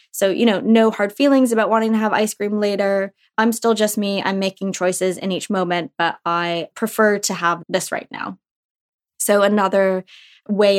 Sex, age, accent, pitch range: female, 20-39, American, 185-220 Hz